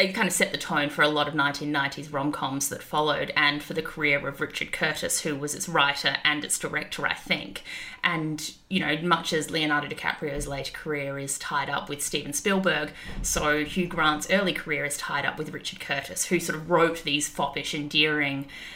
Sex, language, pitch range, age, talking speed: female, English, 150-185 Hz, 20-39, 200 wpm